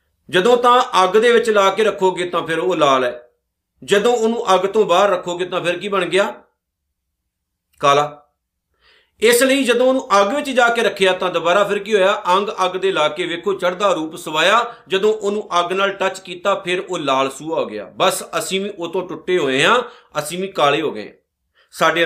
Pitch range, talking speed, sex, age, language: 145-195 Hz, 200 wpm, male, 50-69, Punjabi